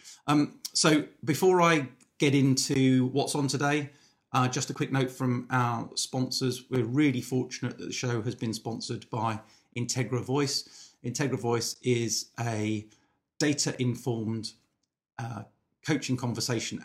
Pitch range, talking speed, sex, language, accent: 110-130 Hz, 135 wpm, male, English, British